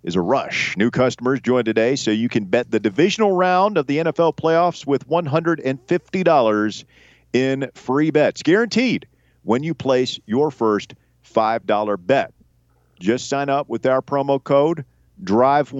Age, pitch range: 40-59, 110-140 Hz